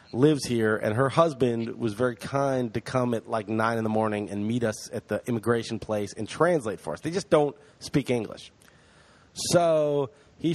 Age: 30-49